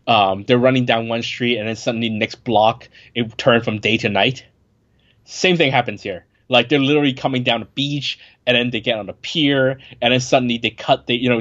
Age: 20-39